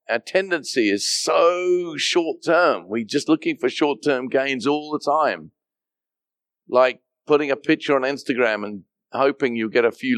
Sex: male